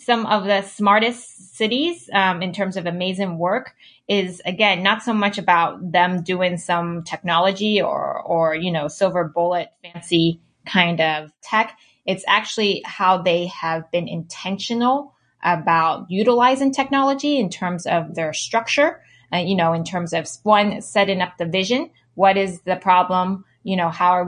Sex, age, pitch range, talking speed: female, 20-39, 170-205 Hz, 160 wpm